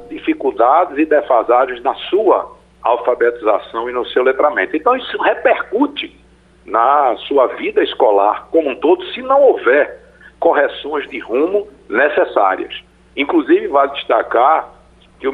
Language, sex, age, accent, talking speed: Portuguese, male, 60-79, Brazilian, 125 wpm